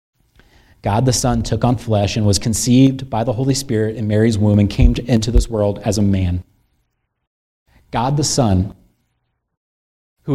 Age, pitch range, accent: 30-49, 100-120 Hz, American